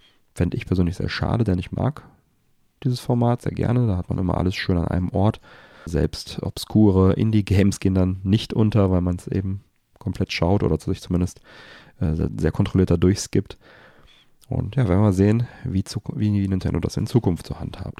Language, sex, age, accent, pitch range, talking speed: German, male, 40-59, German, 90-110 Hz, 195 wpm